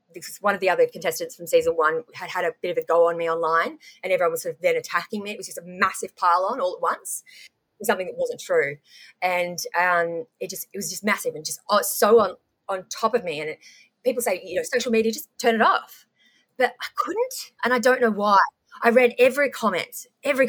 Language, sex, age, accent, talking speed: English, female, 20-39, Australian, 235 wpm